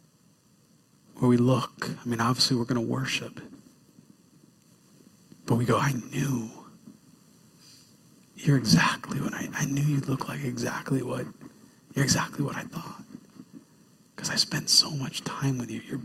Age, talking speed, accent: 40-59, 145 wpm, American